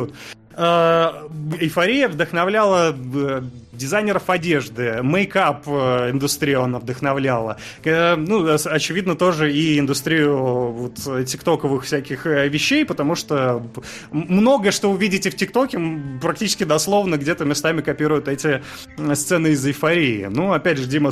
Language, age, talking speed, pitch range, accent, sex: Russian, 30-49, 110 wpm, 140-180 Hz, native, male